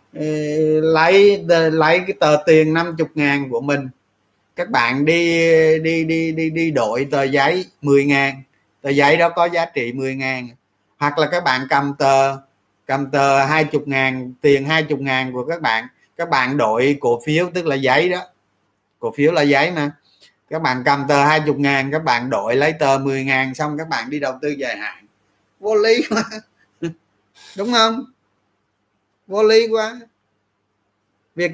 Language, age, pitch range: Vietnamese, 20-39, 110-165 Hz